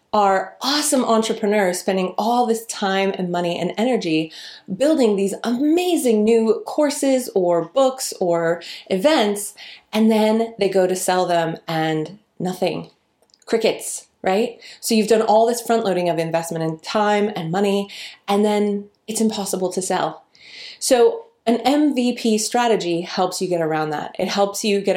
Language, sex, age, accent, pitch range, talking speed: English, female, 30-49, American, 175-225 Hz, 150 wpm